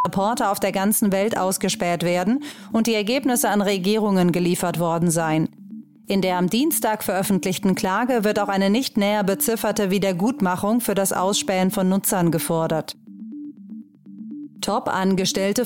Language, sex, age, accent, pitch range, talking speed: German, female, 30-49, German, 190-225 Hz, 135 wpm